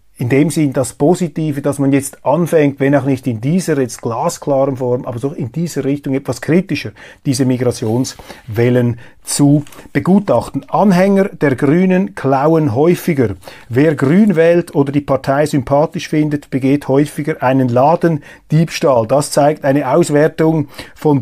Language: German